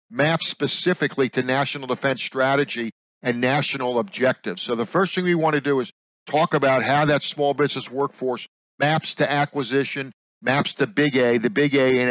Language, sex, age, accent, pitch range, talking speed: English, male, 50-69, American, 130-150 Hz, 180 wpm